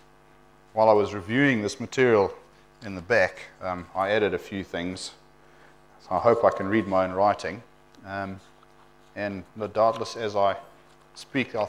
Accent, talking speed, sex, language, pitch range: Australian, 160 wpm, male, English, 95-130 Hz